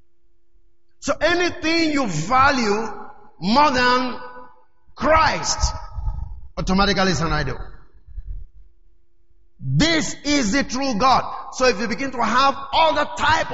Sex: male